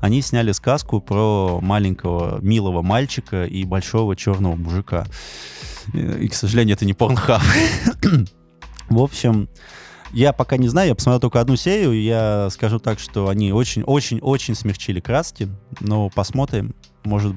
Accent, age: native, 20-39